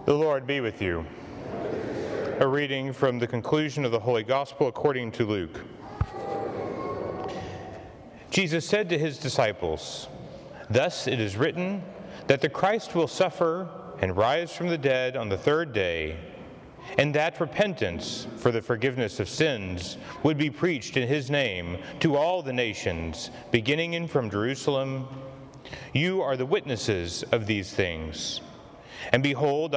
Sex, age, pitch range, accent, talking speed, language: male, 30-49, 120-155 Hz, American, 145 wpm, English